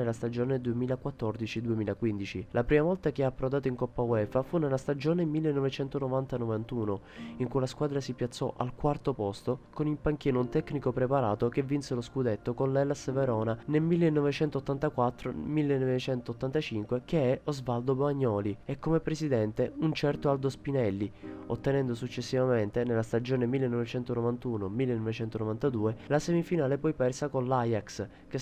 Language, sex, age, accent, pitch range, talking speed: Italian, male, 20-39, native, 115-145 Hz, 135 wpm